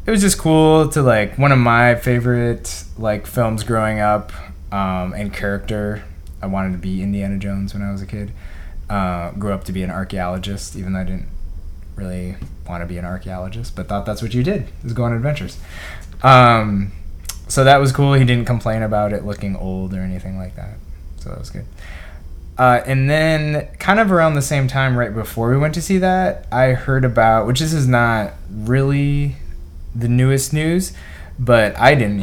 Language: English